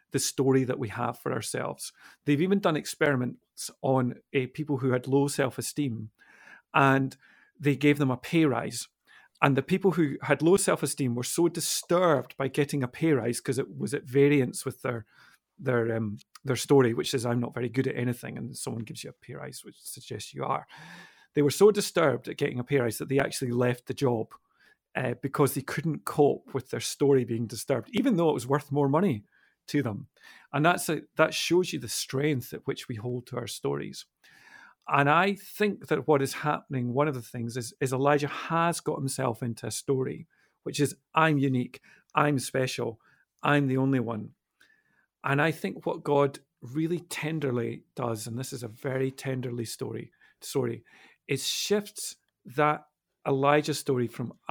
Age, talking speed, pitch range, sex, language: 40-59, 190 wpm, 125-150 Hz, male, English